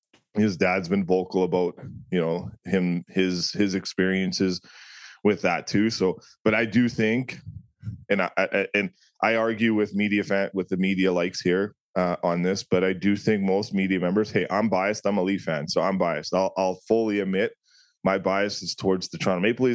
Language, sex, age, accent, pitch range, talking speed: English, male, 20-39, American, 90-105 Hz, 195 wpm